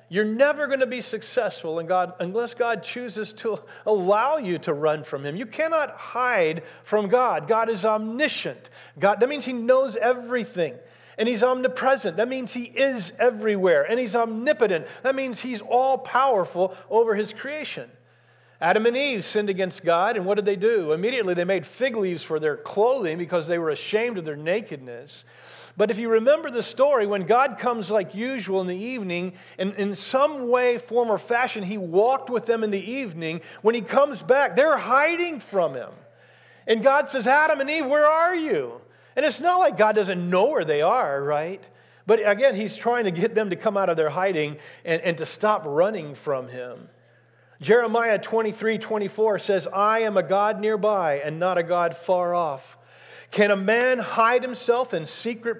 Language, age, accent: English, 40-59, American